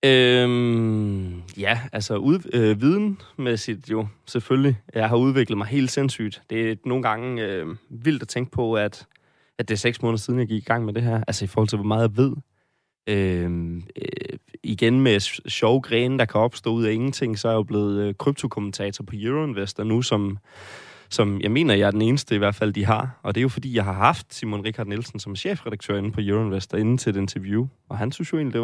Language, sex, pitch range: Danish, male, 105-125 Hz